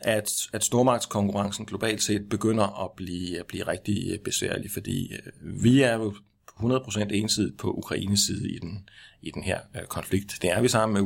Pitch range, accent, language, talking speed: 95-110 Hz, native, Danish, 175 wpm